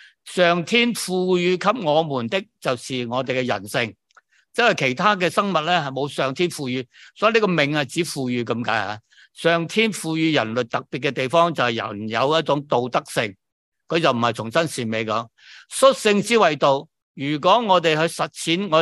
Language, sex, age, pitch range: Chinese, male, 50-69, 125-170 Hz